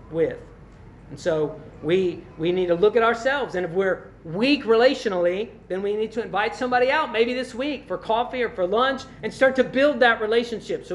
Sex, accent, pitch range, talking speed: male, American, 185-245 Hz, 205 wpm